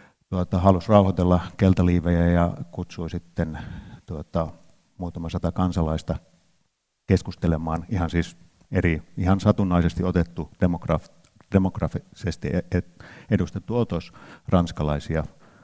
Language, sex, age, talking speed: Finnish, male, 50-69, 90 wpm